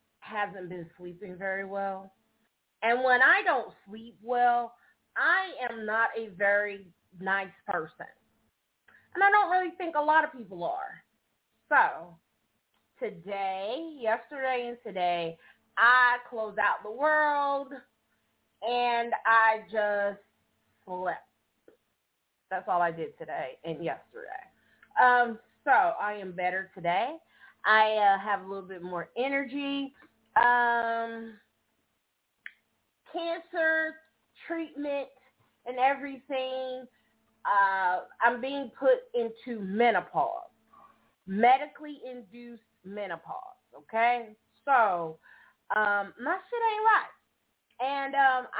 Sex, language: female, English